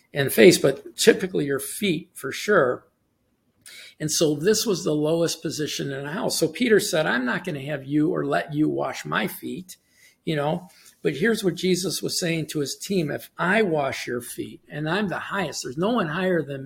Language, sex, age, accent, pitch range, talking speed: English, male, 50-69, American, 150-190 Hz, 210 wpm